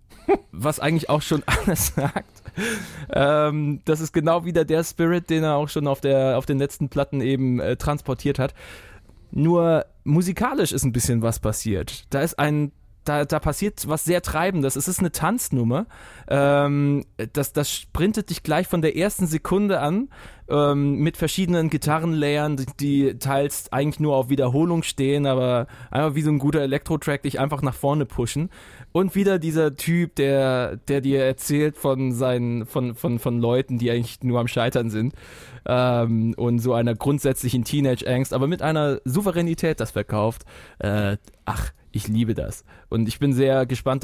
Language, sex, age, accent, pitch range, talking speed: German, male, 20-39, German, 120-155 Hz, 165 wpm